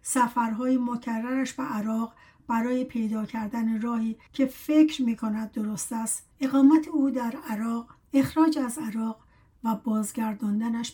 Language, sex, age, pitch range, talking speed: Persian, female, 60-79, 220-260 Hz, 120 wpm